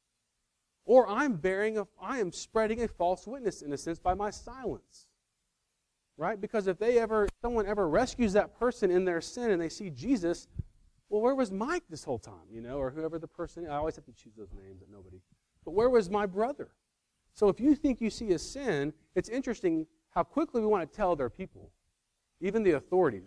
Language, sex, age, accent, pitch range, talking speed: English, male, 40-59, American, 130-200 Hz, 210 wpm